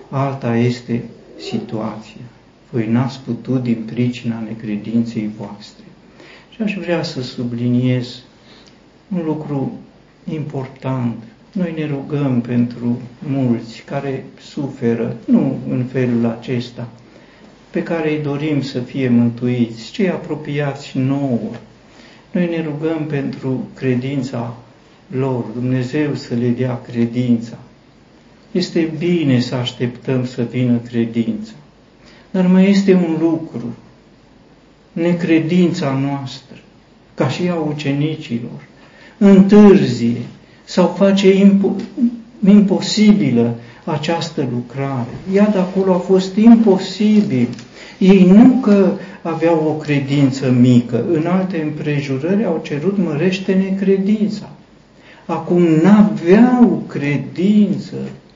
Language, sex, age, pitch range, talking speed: Romanian, male, 60-79, 120-180 Hz, 100 wpm